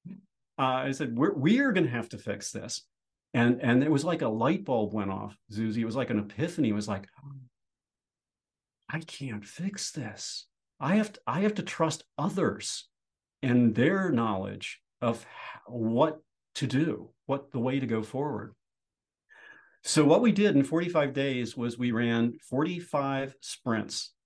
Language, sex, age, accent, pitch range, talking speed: English, male, 50-69, American, 110-140 Hz, 175 wpm